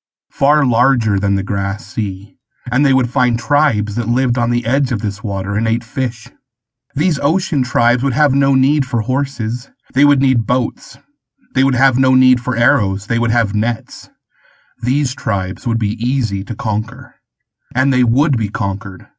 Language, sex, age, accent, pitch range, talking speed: English, male, 30-49, American, 110-135 Hz, 180 wpm